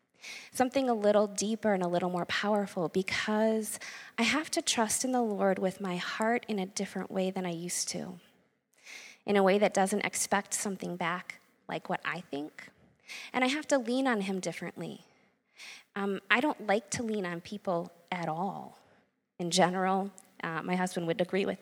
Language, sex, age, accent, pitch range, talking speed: English, female, 20-39, American, 180-215 Hz, 185 wpm